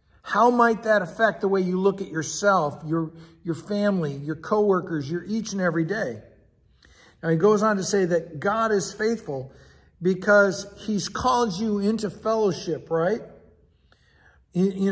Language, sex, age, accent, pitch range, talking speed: English, male, 50-69, American, 165-215 Hz, 155 wpm